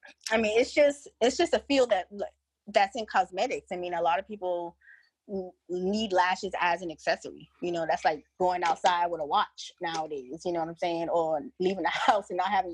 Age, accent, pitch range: 20-39, American, 170-205 Hz